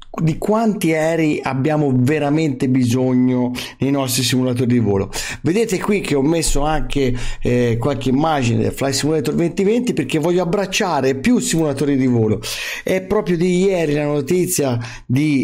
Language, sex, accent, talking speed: Italian, male, native, 150 wpm